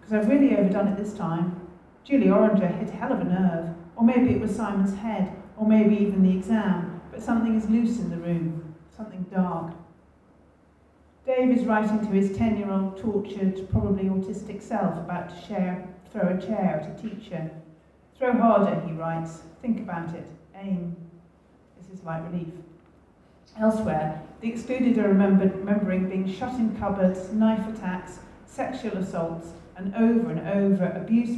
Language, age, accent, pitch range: English, 40-59, British, 170-210 Hz